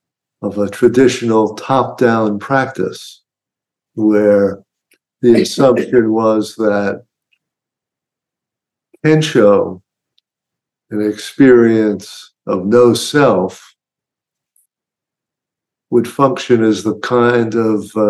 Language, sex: English, male